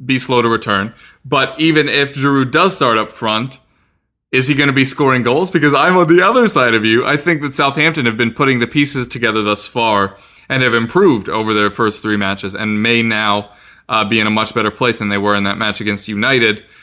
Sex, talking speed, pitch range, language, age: male, 230 wpm, 110-140 Hz, English, 20-39